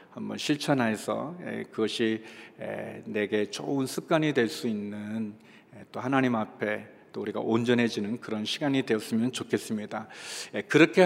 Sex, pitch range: male, 110-145 Hz